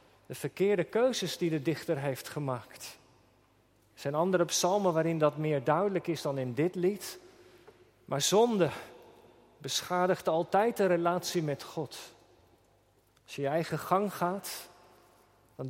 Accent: Dutch